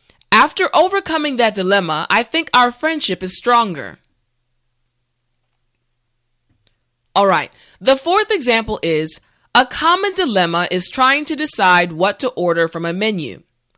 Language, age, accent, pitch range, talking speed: English, 20-39, American, 155-250 Hz, 125 wpm